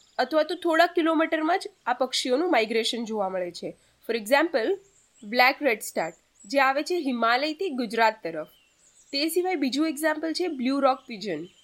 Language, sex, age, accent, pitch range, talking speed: Gujarati, female, 20-39, native, 235-345 Hz, 155 wpm